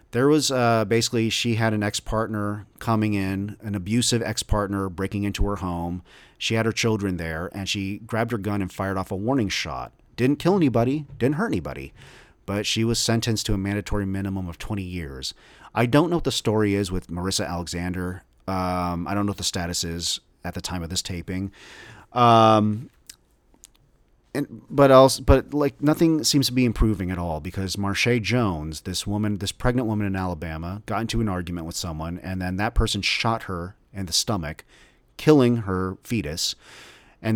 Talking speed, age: 185 wpm, 40-59